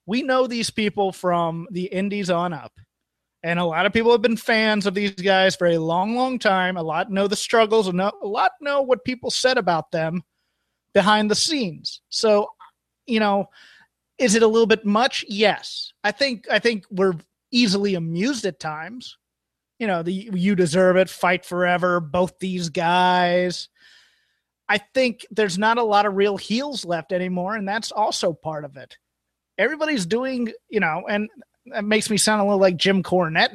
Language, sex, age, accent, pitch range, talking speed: English, male, 30-49, American, 175-215 Hz, 185 wpm